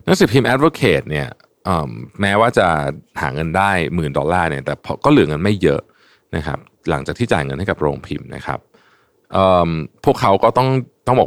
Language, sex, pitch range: Thai, male, 80-115 Hz